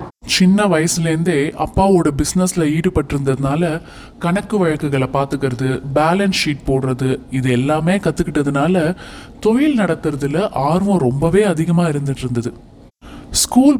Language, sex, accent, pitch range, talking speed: Tamil, male, native, 140-185 Hz, 95 wpm